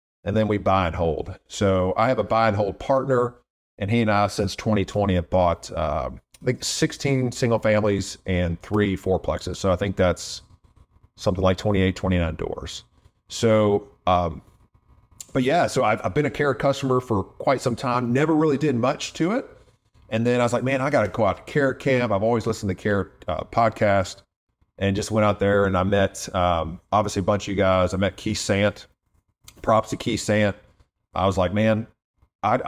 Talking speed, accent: 200 wpm, American